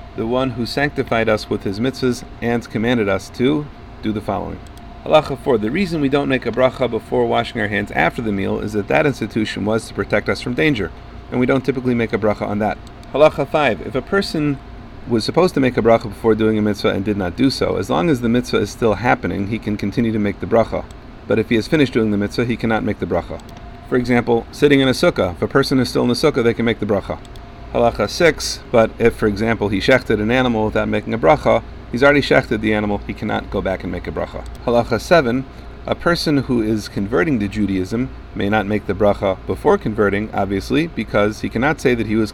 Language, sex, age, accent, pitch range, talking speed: English, male, 40-59, American, 105-130 Hz, 240 wpm